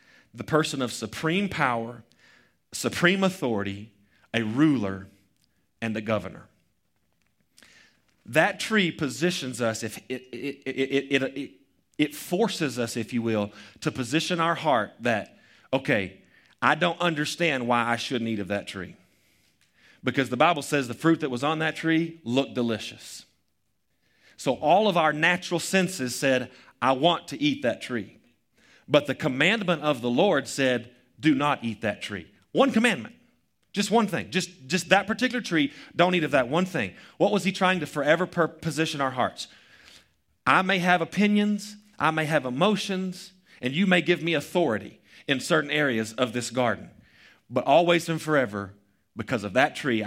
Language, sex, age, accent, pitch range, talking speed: English, male, 40-59, American, 115-175 Hz, 160 wpm